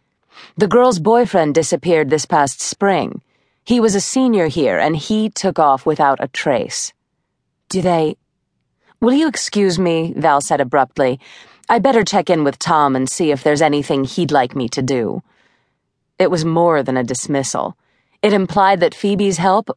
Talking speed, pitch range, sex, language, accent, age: 165 wpm, 155-220 Hz, female, English, American, 30-49